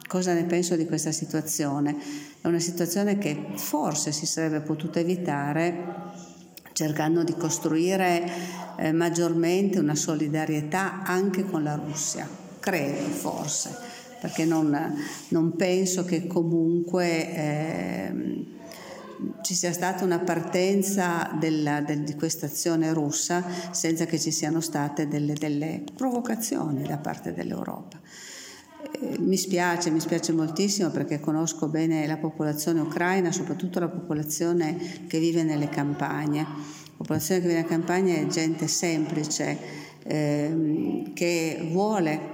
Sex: female